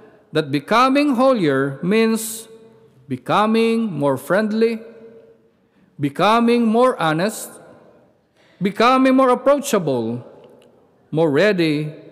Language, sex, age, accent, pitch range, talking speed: English, male, 50-69, Filipino, 145-225 Hz, 75 wpm